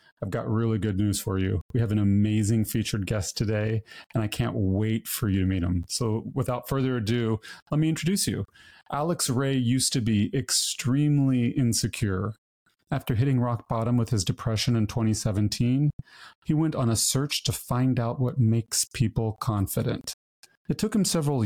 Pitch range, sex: 110-130 Hz, male